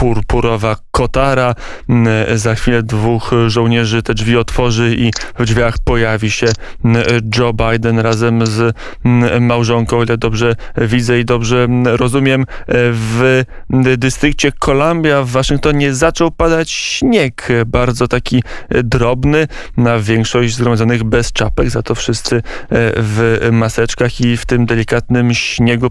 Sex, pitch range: male, 115-135 Hz